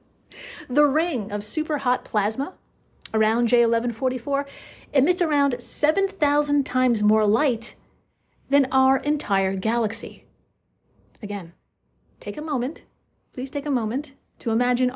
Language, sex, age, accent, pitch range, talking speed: English, female, 30-49, American, 225-285 Hz, 110 wpm